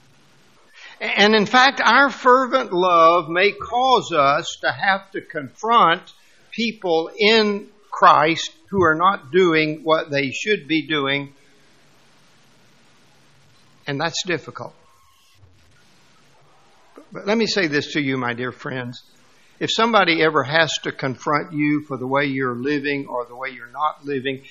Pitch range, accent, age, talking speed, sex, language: 135-180 Hz, American, 60-79, 135 wpm, male, English